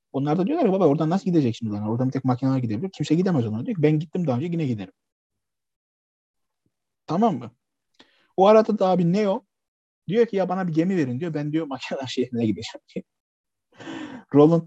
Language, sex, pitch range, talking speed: Turkish, male, 120-160 Hz, 195 wpm